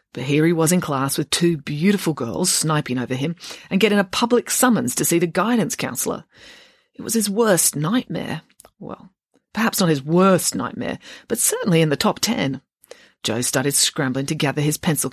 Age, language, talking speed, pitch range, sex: 30-49, English, 185 wpm, 140-205 Hz, female